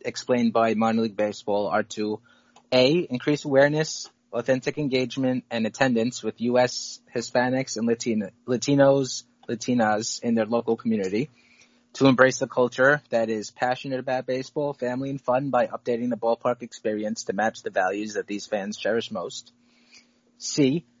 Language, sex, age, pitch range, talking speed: English, male, 20-39, 115-140 Hz, 150 wpm